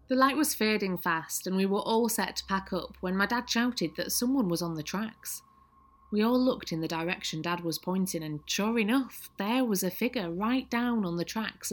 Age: 30-49